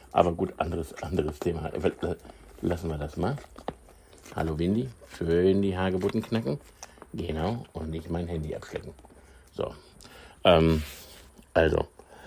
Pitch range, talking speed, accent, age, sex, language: 80-95 Hz, 115 wpm, German, 60-79, male, German